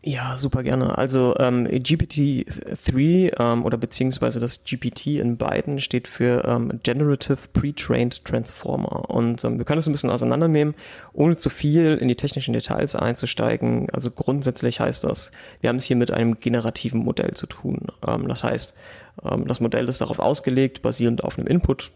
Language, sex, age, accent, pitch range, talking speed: German, male, 30-49, German, 115-135 Hz, 170 wpm